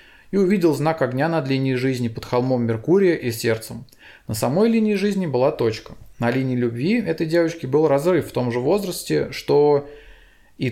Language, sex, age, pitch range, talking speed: Russian, male, 20-39, 125-160 Hz, 175 wpm